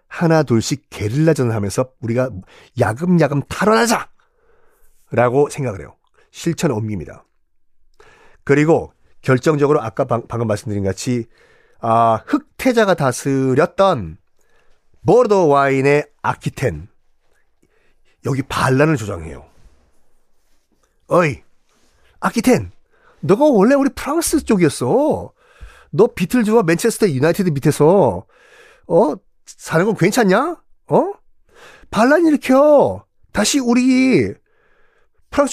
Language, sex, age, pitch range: Korean, male, 40-59, 130-220 Hz